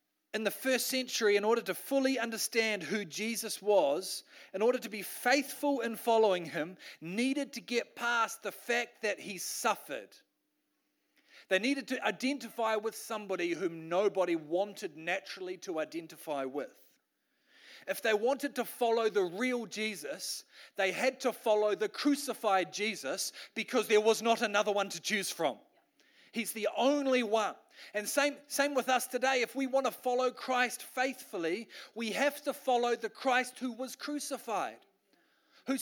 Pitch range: 210-270 Hz